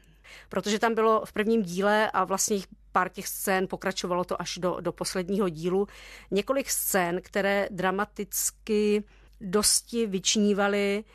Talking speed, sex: 130 wpm, female